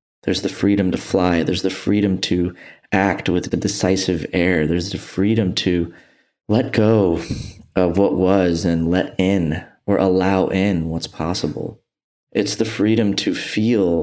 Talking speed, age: 155 wpm, 30-49